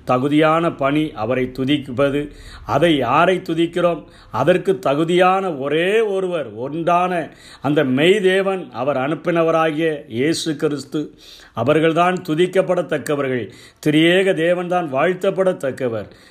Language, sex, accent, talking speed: Tamil, male, native, 85 wpm